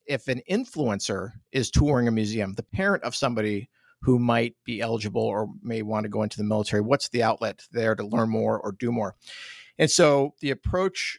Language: English